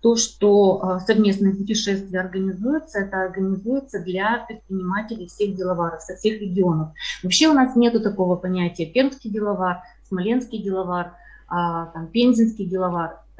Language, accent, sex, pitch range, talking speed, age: Russian, native, female, 185-225 Hz, 115 wpm, 30-49